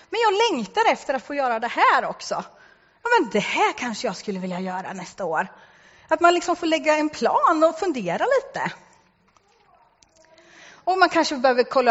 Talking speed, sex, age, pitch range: 180 wpm, female, 30-49, 230-320 Hz